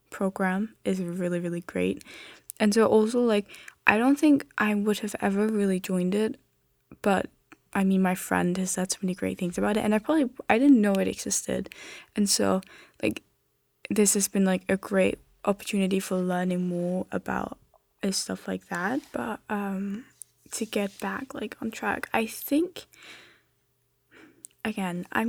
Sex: female